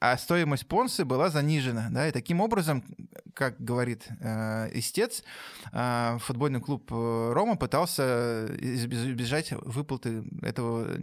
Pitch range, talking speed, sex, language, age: 120-155 Hz, 110 wpm, male, Russian, 20-39